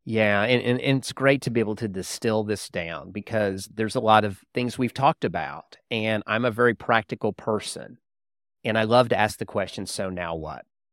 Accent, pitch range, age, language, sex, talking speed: American, 100-120 Hz, 40-59, English, male, 205 wpm